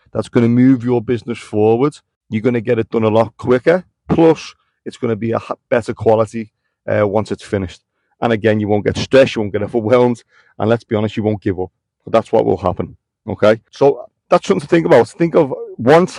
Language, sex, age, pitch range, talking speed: English, male, 30-49, 105-125 Hz, 215 wpm